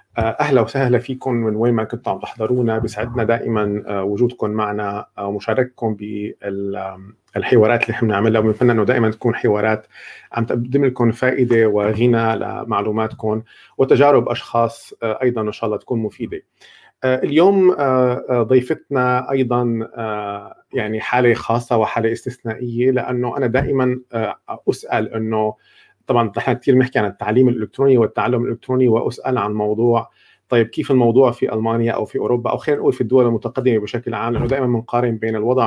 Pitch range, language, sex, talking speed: 110-125 Hz, Arabic, male, 140 wpm